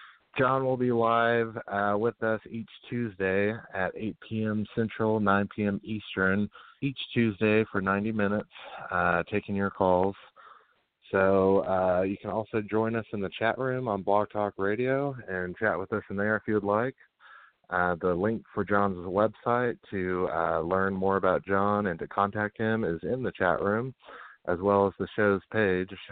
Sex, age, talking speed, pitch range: male, 30-49, 175 wpm, 95-110 Hz